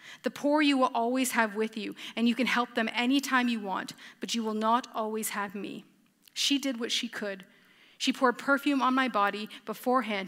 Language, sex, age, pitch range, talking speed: English, female, 30-49, 215-260 Hz, 210 wpm